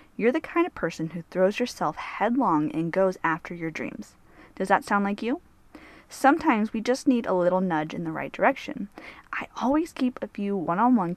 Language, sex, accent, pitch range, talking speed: English, female, American, 180-250 Hz, 195 wpm